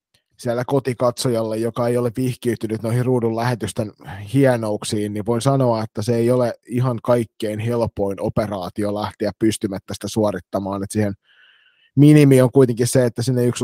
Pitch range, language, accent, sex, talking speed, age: 110-125 Hz, Finnish, native, male, 150 wpm, 20-39